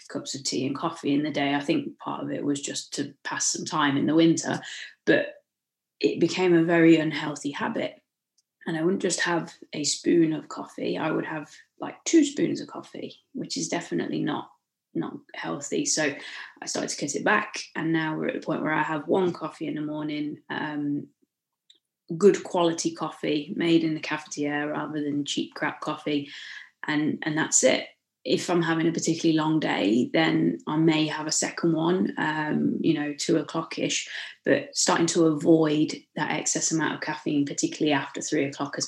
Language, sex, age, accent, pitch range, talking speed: English, female, 20-39, British, 145-175 Hz, 190 wpm